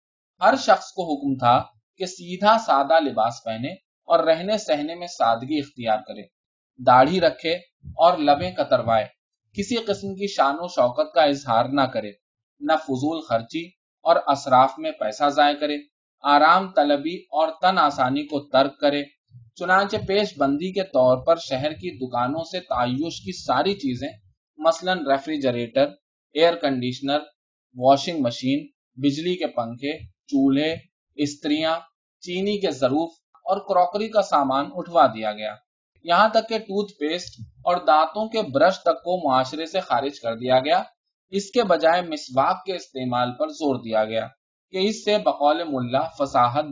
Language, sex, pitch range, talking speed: Urdu, male, 130-180 Hz, 145 wpm